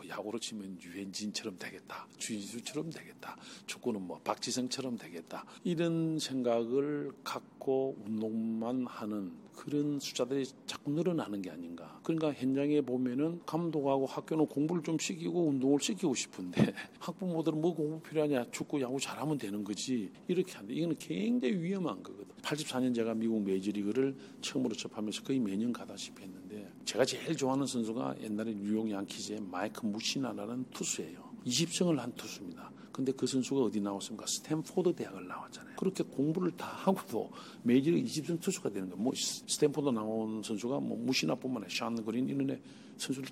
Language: Korean